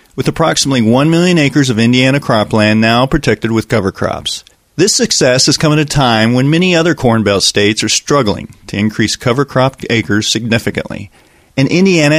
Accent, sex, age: American, male, 40-59